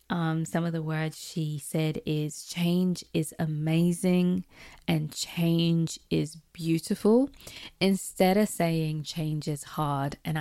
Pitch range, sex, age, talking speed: 155-185 Hz, female, 20-39, 125 wpm